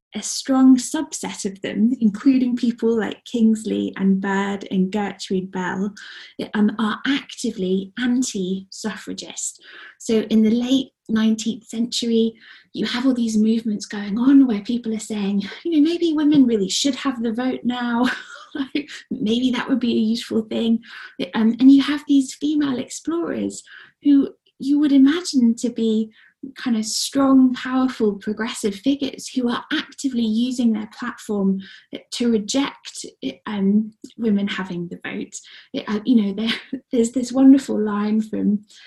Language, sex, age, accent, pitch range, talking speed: English, female, 20-39, British, 215-265 Hz, 145 wpm